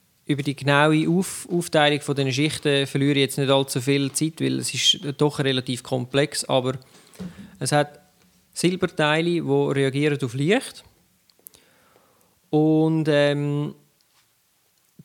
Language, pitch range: German, 130-160 Hz